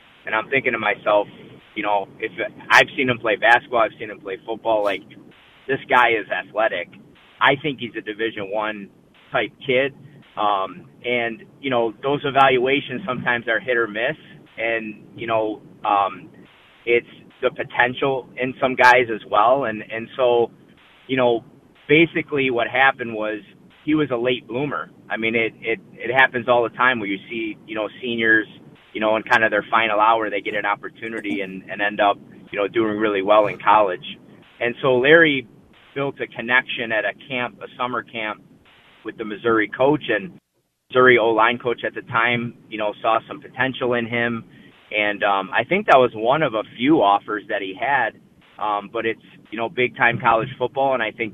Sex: male